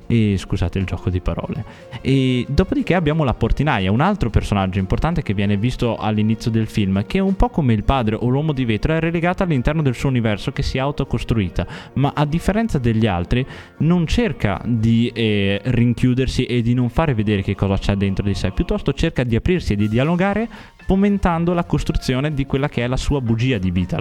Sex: male